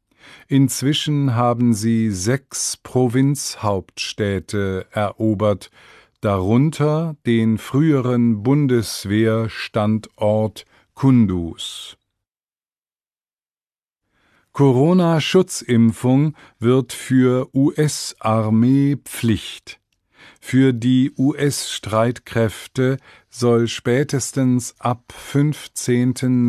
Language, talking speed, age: English, 50 wpm, 50-69